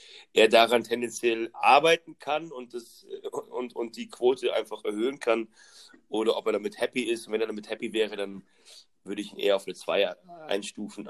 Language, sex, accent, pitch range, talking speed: German, male, German, 105-145 Hz, 190 wpm